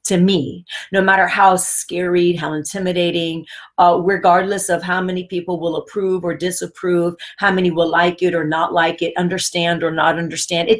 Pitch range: 170-235 Hz